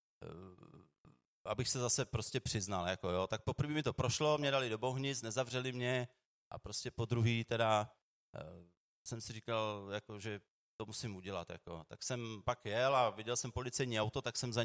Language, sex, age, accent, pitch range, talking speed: Czech, male, 30-49, native, 110-135 Hz, 185 wpm